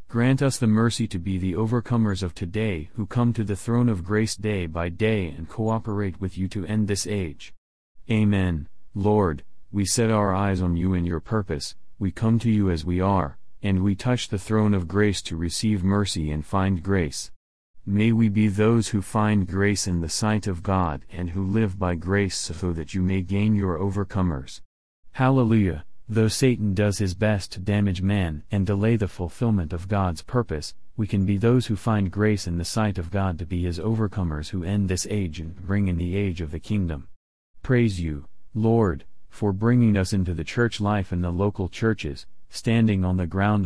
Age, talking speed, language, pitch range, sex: 40-59, 200 wpm, English, 90-110 Hz, male